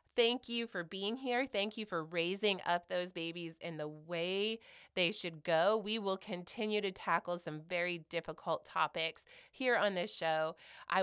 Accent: American